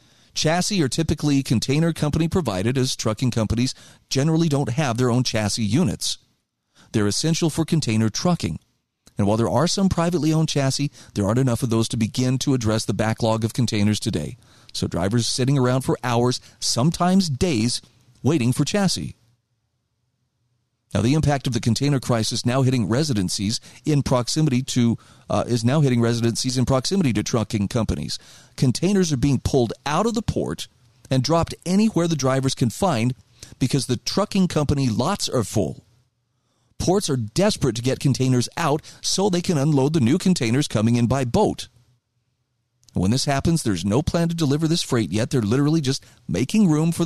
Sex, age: male, 40-59